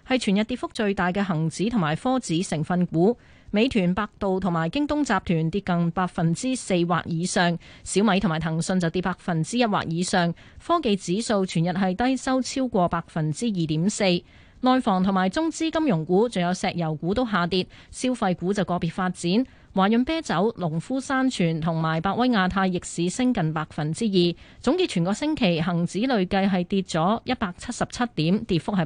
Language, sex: Chinese, female